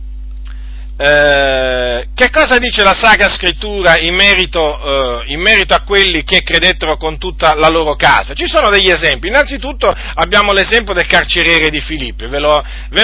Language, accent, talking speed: Italian, native, 150 wpm